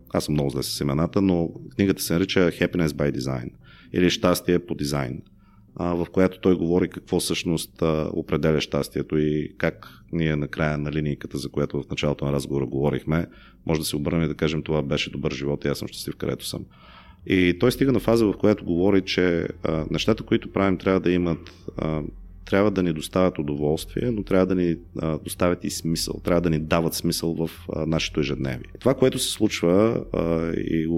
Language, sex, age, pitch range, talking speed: Bulgarian, male, 30-49, 75-90 Hz, 190 wpm